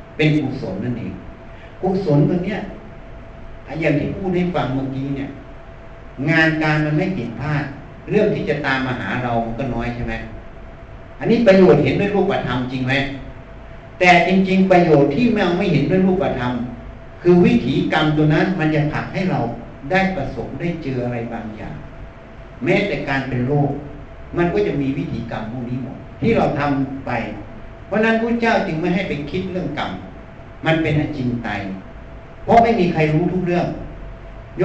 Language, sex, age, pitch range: Thai, male, 60-79, 130-180 Hz